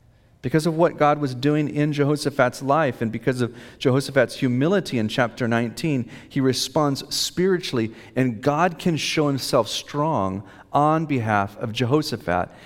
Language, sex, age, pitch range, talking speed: English, male, 40-59, 110-150 Hz, 140 wpm